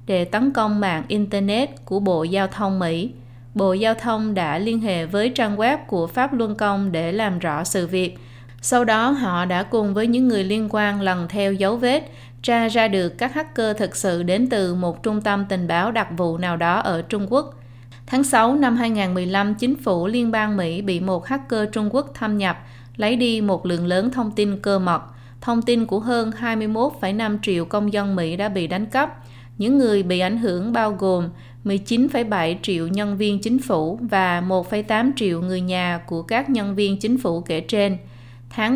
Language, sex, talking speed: Vietnamese, female, 200 wpm